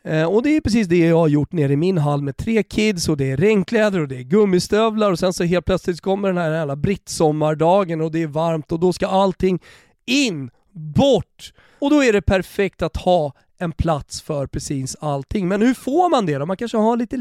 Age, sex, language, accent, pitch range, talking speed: 30-49, male, Swedish, native, 165-220 Hz, 225 wpm